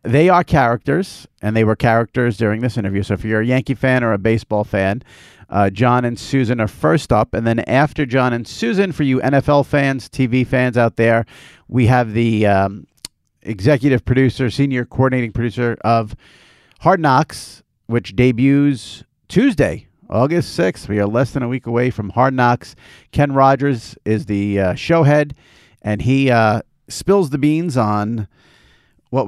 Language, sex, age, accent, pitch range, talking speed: English, male, 50-69, American, 105-135 Hz, 170 wpm